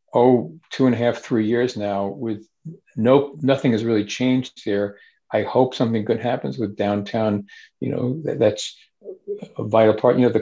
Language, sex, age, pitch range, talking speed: English, male, 50-69, 110-130 Hz, 180 wpm